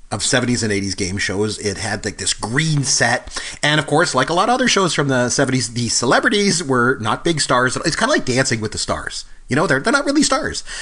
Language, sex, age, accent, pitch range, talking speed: English, male, 30-49, American, 105-140 Hz, 250 wpm